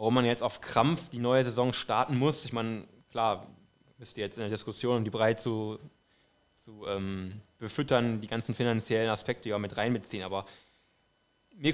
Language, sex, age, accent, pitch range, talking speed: German, male, 20-39, German, 110-135 Hz, 175 wpm